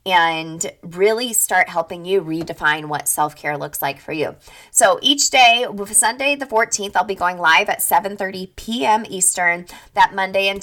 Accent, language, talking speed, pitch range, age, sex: American, English, 165 wpm, 165-220 Hz, 20-39, female